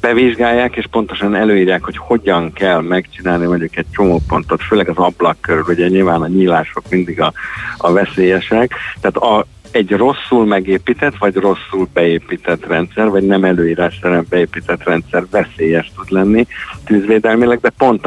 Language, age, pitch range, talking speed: Hungarian, 50-69, 85-100 Hz, 145 wpm